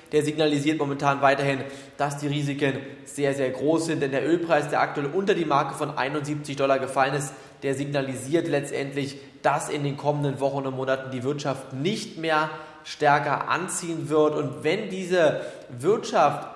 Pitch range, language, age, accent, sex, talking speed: 135-150 Hz, German, 20-39, German, male, 165 wpm